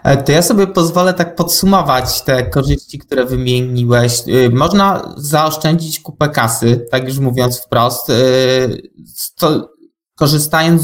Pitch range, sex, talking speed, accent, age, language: 125-150 Hz, male, 105 wpm, native, 20-39, Polish